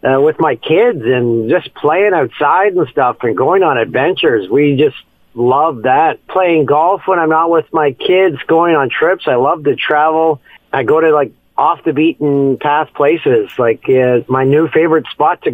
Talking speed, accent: 190 wpm, American